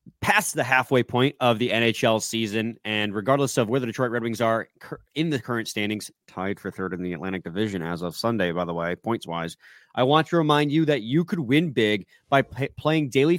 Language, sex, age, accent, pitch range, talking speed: English, male, 30-49, American, 105-150 Hz, 215 wpm